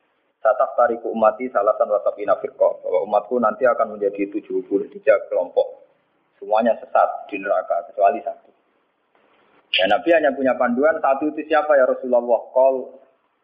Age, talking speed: 30-49, 140 wpm